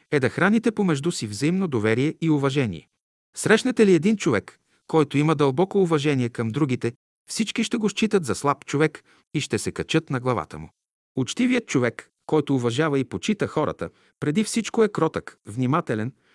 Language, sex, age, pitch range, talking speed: Bulgarian, male, 50-69, 120-160 Hz, 165 wpm